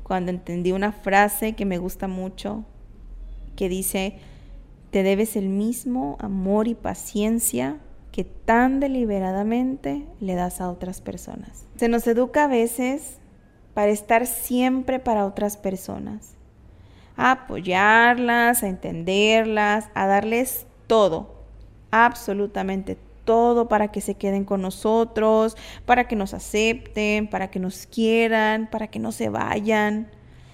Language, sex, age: Spanish, female, 30-49